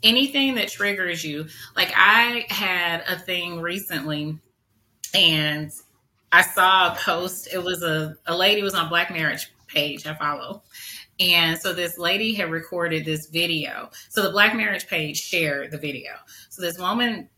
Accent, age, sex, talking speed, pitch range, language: American, 30-49, female, 160 wpm, 150-185 Hz, English